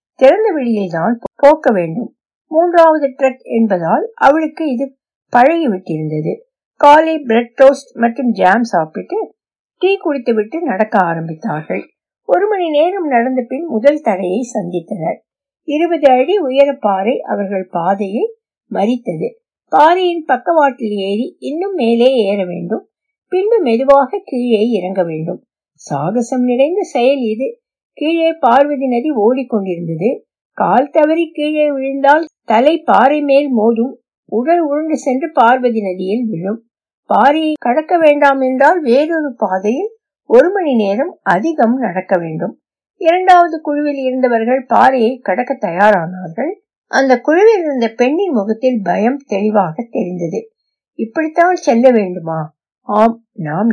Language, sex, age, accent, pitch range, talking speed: Tamil, female, 60-79, native, 220-310 Hz, 90 wpm